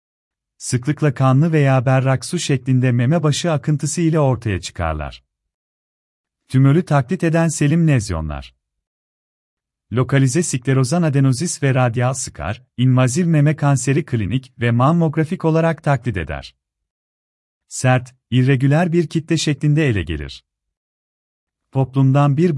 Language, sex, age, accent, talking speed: Turkish, male, 40-59, native, 105 wpm